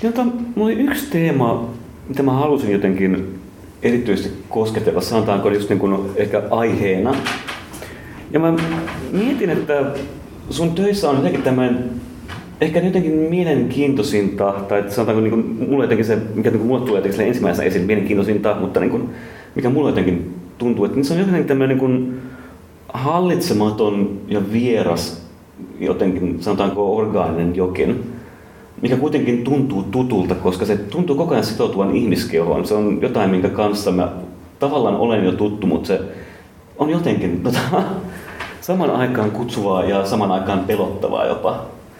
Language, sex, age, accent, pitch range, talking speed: Finnish, male, 30-49, native, 100-140 Hz, 130 wpm